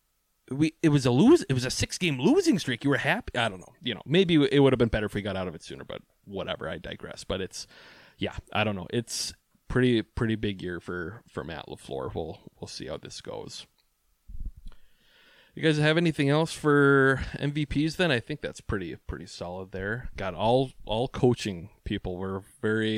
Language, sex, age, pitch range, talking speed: English, male, 20-39, 105-150 Hz, 210 wpm